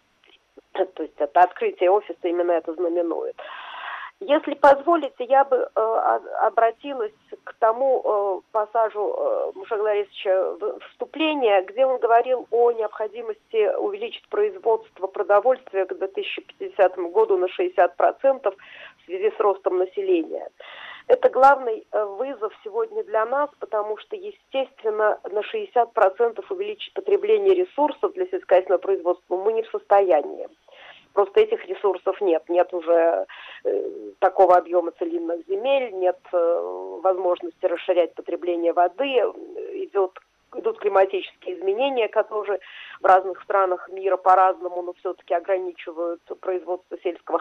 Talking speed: 115 wpm